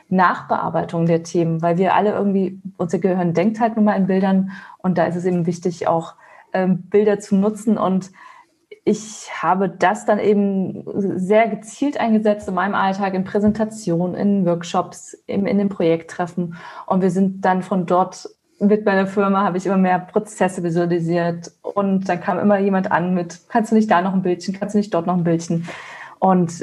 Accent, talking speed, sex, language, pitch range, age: German, 185 wpm, female, German, 170-200 Hz, 20-39